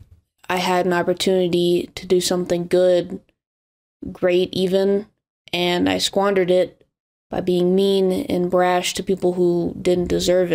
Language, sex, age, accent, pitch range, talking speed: English, female, 20-39, American, 175-200 Hz, 135 wpm